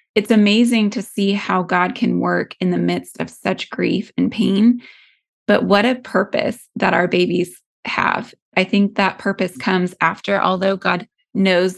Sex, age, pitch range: female, 20-39, 180-200 Hz